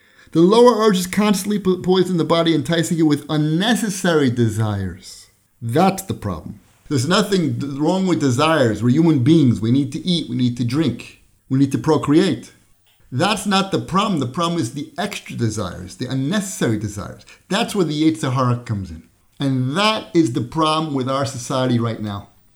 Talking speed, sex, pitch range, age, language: 175 wpm, male, 120-170 Hz, 50-69, English